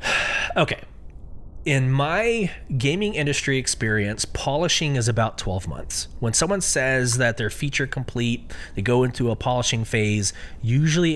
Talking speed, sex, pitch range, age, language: 135 wpm, male, 110-135 Hz, 20-39, English